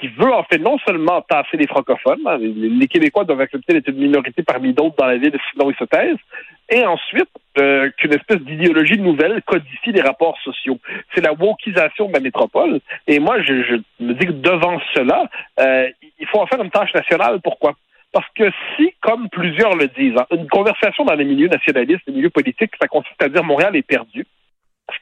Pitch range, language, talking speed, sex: 145-220 Hz, French, 205 wpm, male